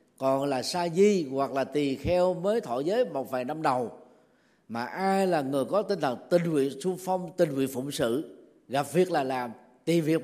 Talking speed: 215 wpm